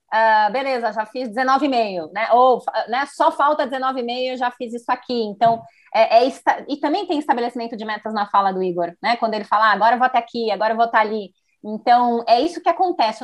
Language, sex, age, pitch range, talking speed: Portuguese, female, 20-39, 215-265 Hz, 230 wpm